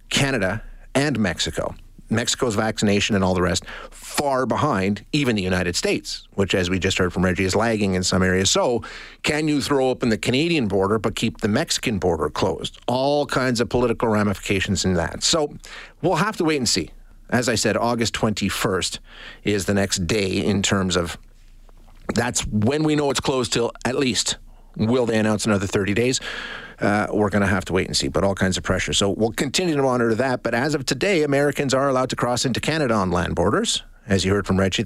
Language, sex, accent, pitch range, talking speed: English, male, American, 95-120 Hz, 210 wpm